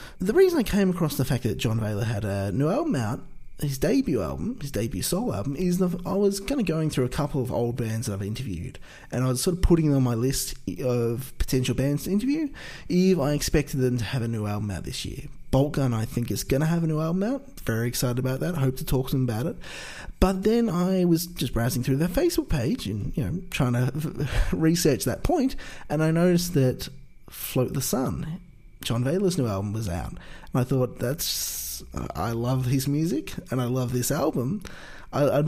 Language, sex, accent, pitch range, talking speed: English, male, Australian, 120-170 Hz, 225 wpm